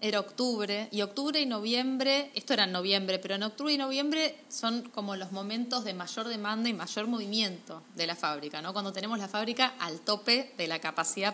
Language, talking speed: Spanish, 200 wpm